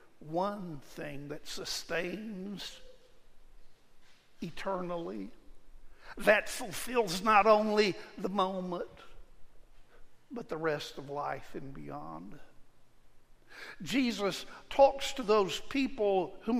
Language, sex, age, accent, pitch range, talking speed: English, male, 60-79, American, 175-230 Hz, 85 wpm